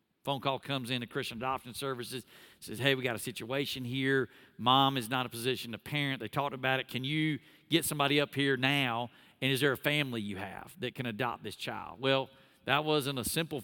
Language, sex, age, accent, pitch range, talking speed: English, male, 50-69, American, 120-140 Hz, 220 wpm